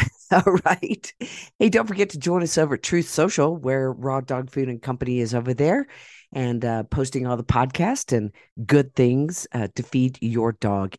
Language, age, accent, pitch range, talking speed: English, 50-69, American, 120-165 Hz, 190 wpm